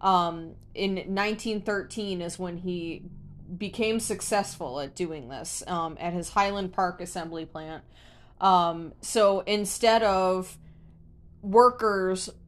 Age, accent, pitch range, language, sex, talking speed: 20-39, American, 185-205 Hz, English, female, 110 wpm